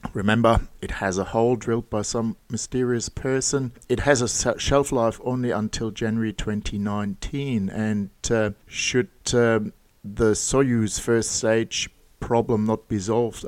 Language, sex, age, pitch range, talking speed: English, male, 50-69, 105-115 Hz, 140 wpm